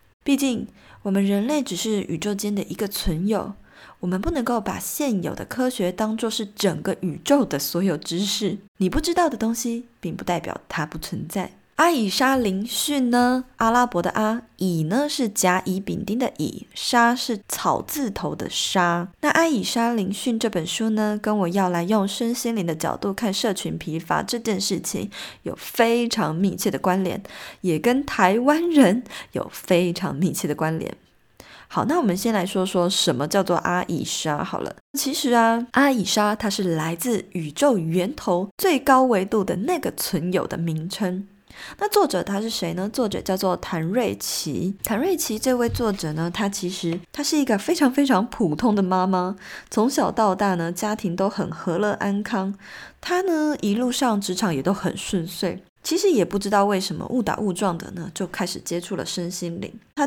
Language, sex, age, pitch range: Chinese, female, 20-39, 185-240 Hz